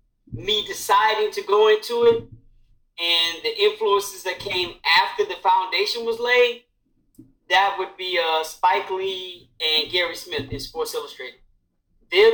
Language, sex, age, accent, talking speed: English, male, 40-59, American, 140 wpm